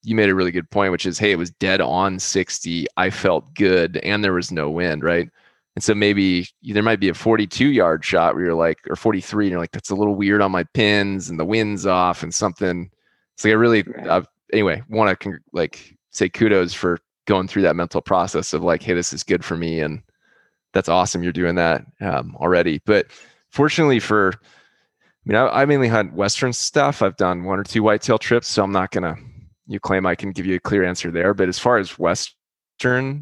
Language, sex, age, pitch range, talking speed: English, male, 20-39, 90-110 Hz, 230 wpm